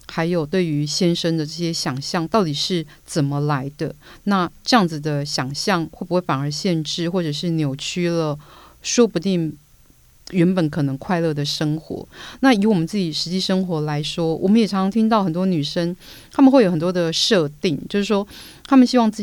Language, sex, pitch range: Chinese, female, 160-195 Hz